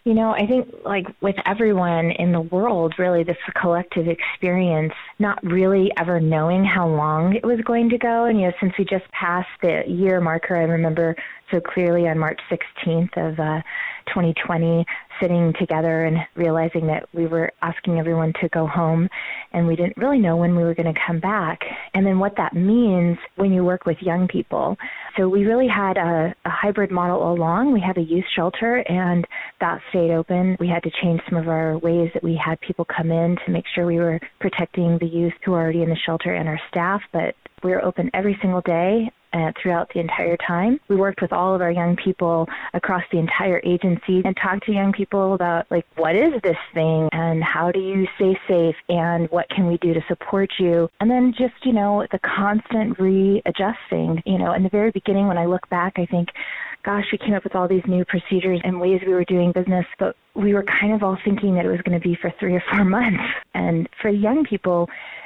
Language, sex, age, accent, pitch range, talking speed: English, female, 20-39, American, 170-195 Hz, 215 wpm